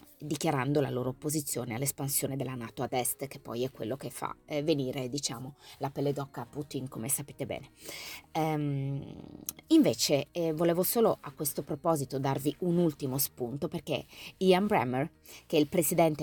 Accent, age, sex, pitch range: native, 20-39, female, 140-165 Hz